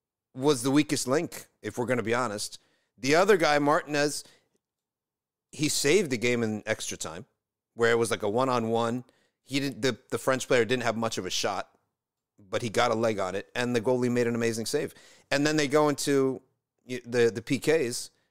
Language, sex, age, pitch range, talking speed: English, male, 40-59, 100-130 Hz, 200 wpm